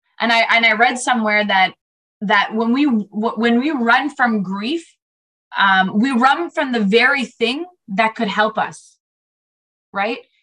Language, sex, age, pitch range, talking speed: English, female, 20-39, 220-270 Hz, 155 wpm